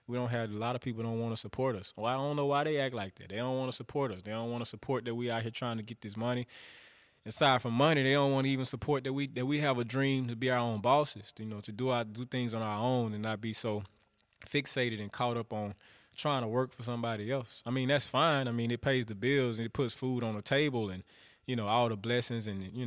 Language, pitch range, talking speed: English, 105-125 Hz, 295 wpm